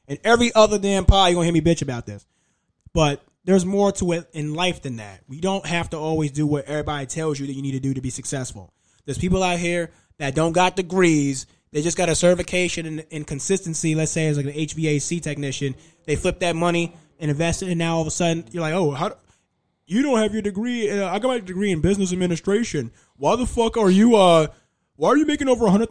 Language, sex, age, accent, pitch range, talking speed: English, male, 20-39, American, 150-185 Hz, 245 wpm